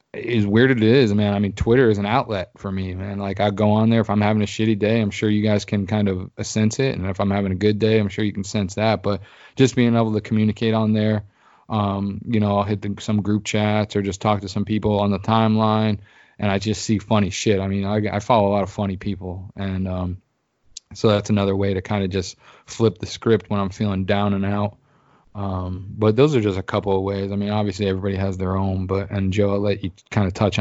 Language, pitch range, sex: English, 100-110 Hz, male